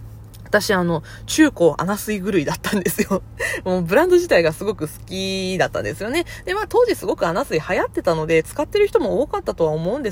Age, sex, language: 20-39, female, Japanese